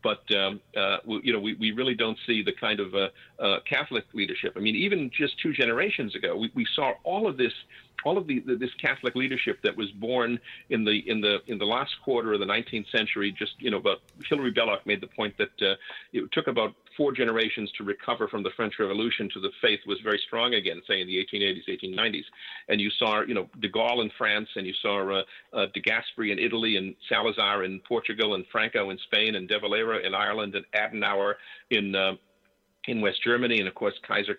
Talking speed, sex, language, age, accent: 225 wpm, male, English, 50-69, American